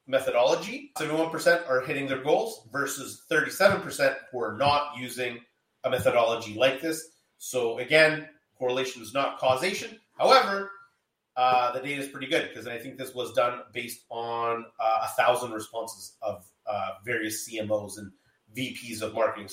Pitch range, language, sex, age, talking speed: 120-160 Hz, English, male, 30-49, 150 wpm